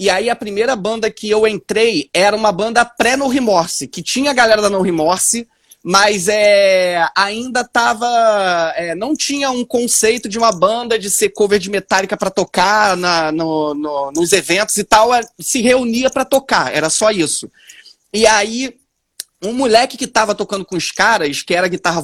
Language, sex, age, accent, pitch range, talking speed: Portuguese, male, 20-39, Brazilian, 195-265 Hz, 180 wpm